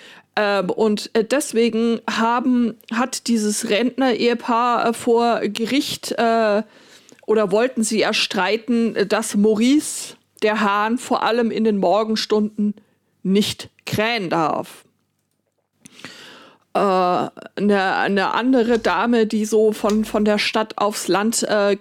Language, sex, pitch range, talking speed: German, female, 205-230 Hz, 105 wpm